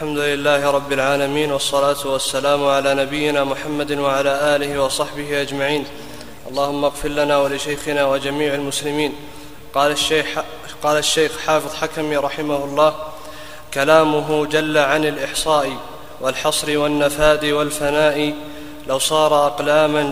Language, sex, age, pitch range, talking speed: Arabic, male, 20-39, 145-155 Hz, 110 wpm